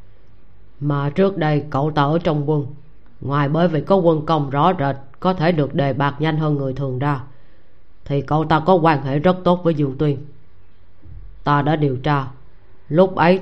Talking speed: 190 wpm